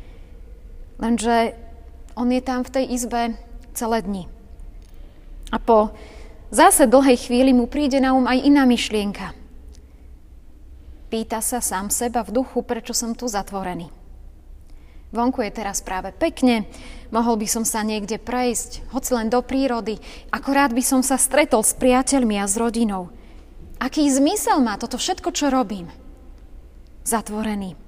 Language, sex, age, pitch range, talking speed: Slovak, female, 20-39, 200-265 Hz, 140 wpm